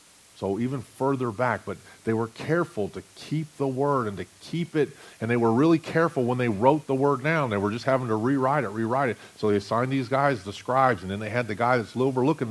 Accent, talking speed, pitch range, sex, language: American, 245 wpm, 105-140 Hz, male, English